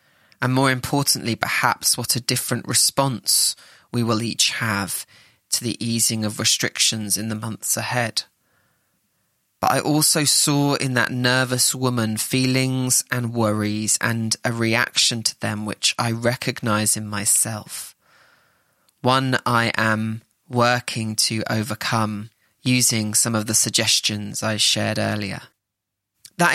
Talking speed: 130 wpm